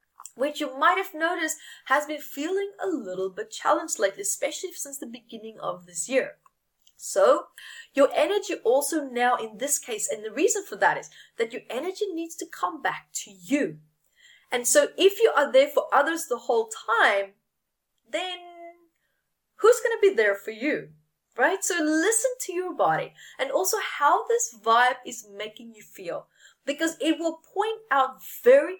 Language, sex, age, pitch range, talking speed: English, female, 20-39, 260-390 Hz, 175 wpm